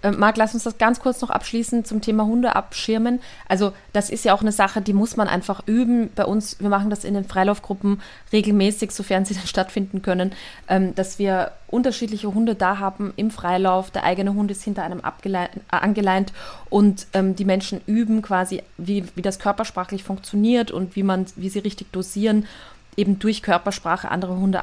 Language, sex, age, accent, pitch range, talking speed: German, female, 20-39, German, 185-205 Hz, 185 wpm